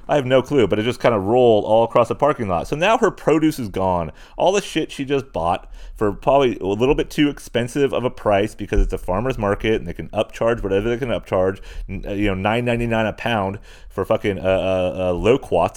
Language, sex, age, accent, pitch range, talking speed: English, male, 30-49, American, 100-140 Hz, 230 wpm